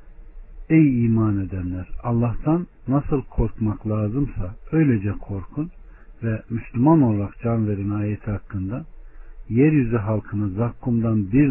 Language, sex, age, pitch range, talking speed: Turkish, male, 60-79, 85-120 Hz, 105 wpm